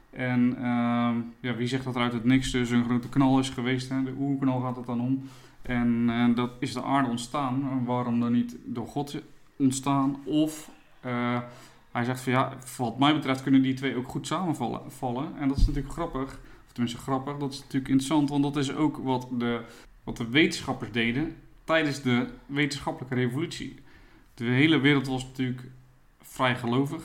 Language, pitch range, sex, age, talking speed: Dutch, 120-135 Hz, male, 20-39, 185 wpm